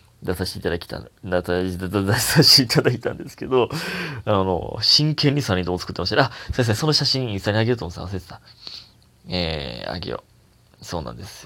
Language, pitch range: Japanese, 90-130 Hz